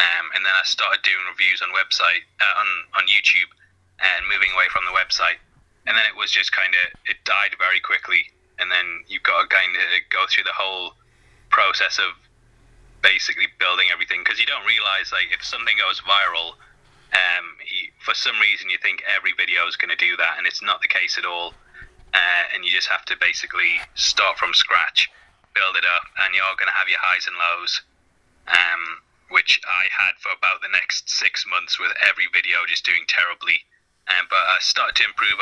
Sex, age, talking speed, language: male, 30-49, 205 wpm, English